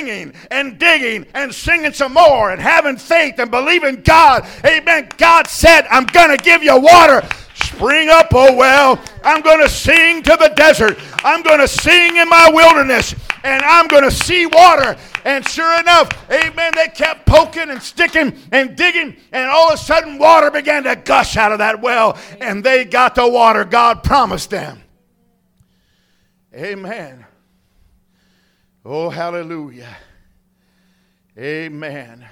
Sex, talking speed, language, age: male, 150 wpm, English, 50-69